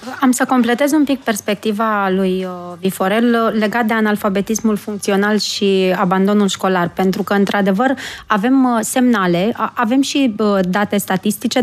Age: 20-39